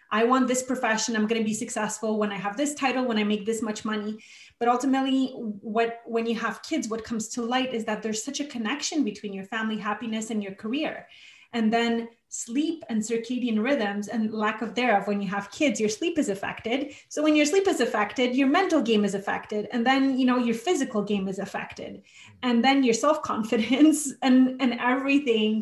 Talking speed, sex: 205 wpm, female